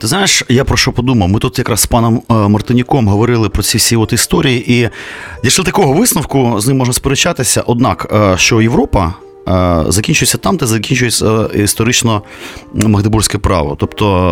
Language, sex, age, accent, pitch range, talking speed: Ukrainian, male, 30-49, native, 95-125 Hz, 155 wpm